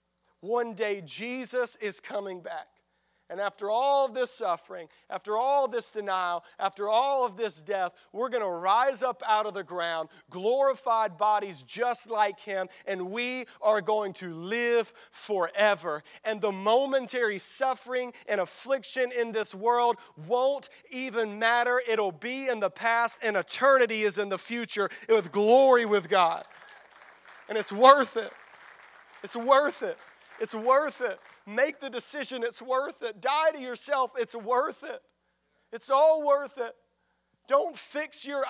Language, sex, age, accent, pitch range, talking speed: English, male, 40-59, American, 200-255 Hz, 155 wpm